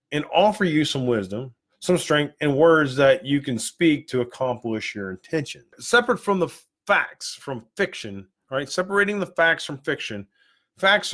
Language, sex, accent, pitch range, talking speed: English, male, American, 120-165 Hz, 160 wpm